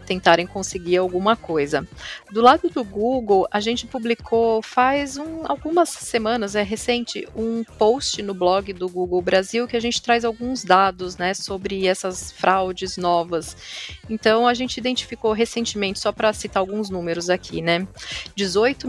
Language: Portuguese